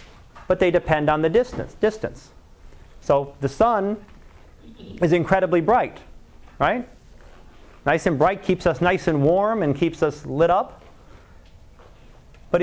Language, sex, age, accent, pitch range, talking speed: English, male, 40-59, American, 130-185 Hz, 135 wpm